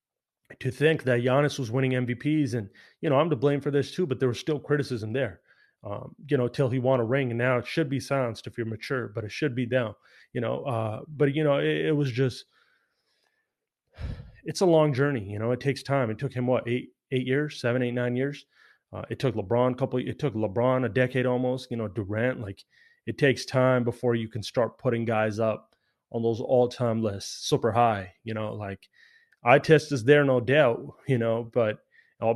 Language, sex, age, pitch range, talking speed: English, male, 30-49, 115-130 Hz, 225 wpm